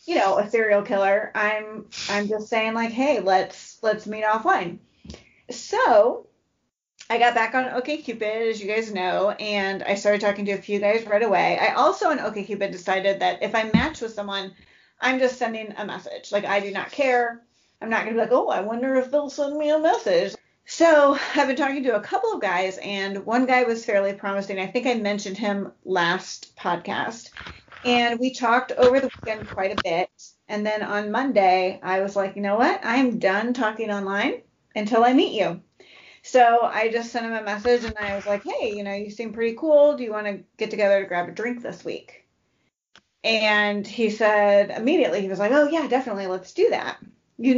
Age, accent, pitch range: 40-59, American, 200-245 Hz